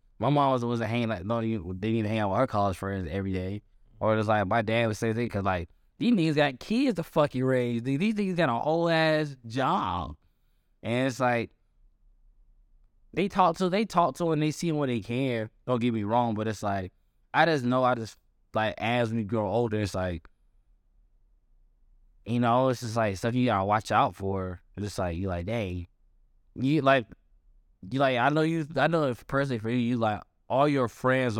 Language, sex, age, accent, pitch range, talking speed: English, male, 20-39, American, 100-130 Hz, 200 wpm